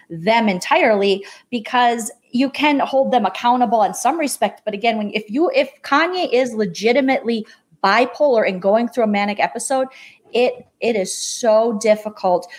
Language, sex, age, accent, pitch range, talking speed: English, female, 30-49, American, 195-245 Hz, 155 wpm